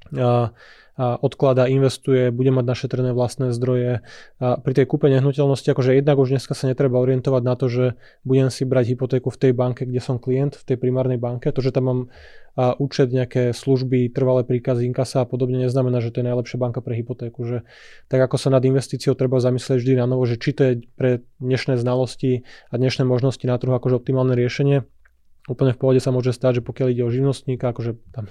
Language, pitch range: Slovak, 125-135 Hz